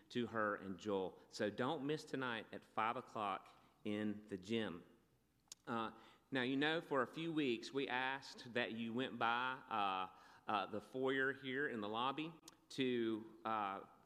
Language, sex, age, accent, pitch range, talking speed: English, male, 40-59, American, 115-145 Hz, 160 wpm